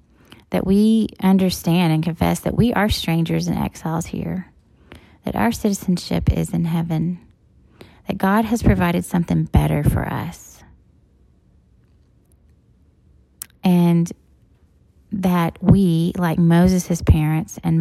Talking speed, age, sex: 110 wpm, 30-49, female